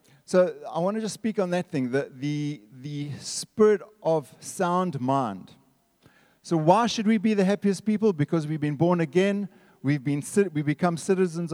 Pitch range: 145-190 Hz